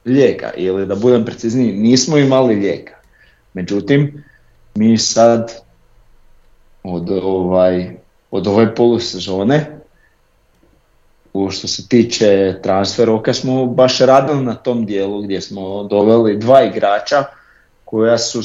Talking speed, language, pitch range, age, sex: 105 wpm, Croatian, 110-130 Hz, 50-69, male